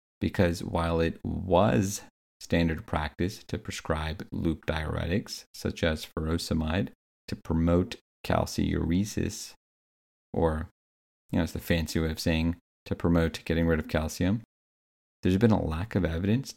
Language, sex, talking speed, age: English, male, 135 wpm, 40-59